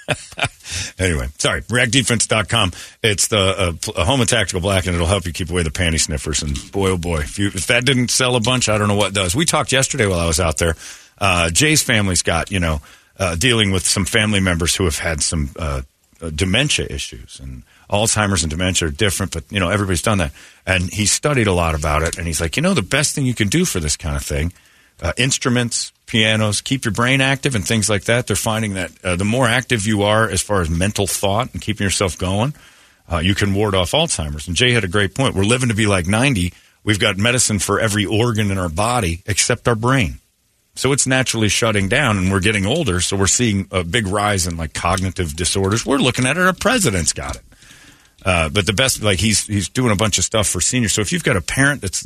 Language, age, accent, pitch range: English, 50-69, American, 90-120 Hz